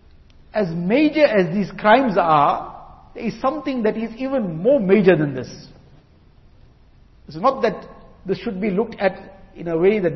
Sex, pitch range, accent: male, 175-225 Hz, Indian